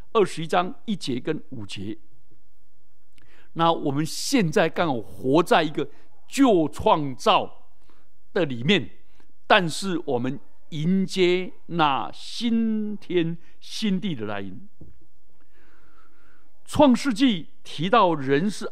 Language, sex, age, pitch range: Chinese, male, 60-79, 145-225 Hz